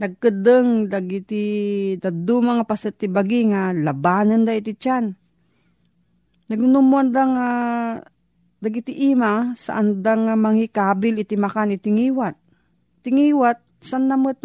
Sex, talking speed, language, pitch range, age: female, 110 wpm, Filipino, 190-235 Hz, 40-59